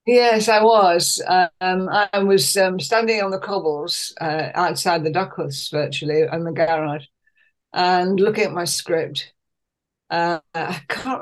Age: 60-79